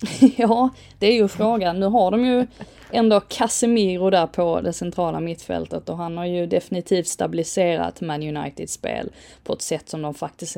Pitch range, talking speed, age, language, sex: 170-210 Hz, 170 wpm, 20-39, English, female